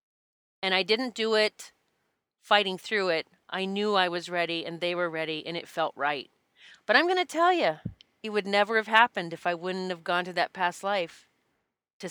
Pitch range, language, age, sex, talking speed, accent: 185-230 Hz, English, 30-49, female, 210 wpm, American